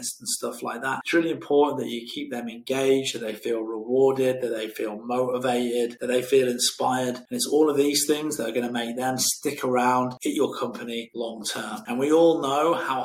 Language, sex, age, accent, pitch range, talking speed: English, male, 30-49, British, 120-135 Hz, 210 wpm